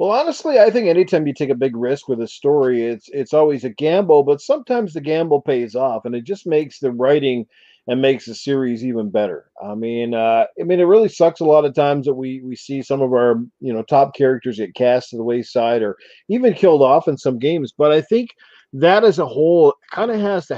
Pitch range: 125-150 Hz